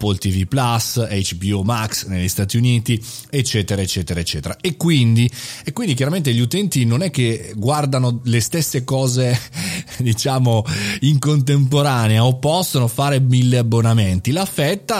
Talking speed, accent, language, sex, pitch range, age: 130 wpm, native, Italian, male, 110-145 Hz, 30-49